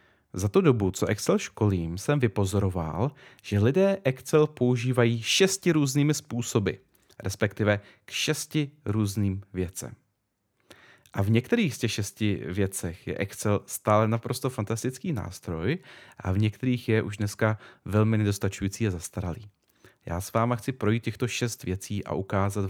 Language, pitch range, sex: Czech, 95-120 Hz, male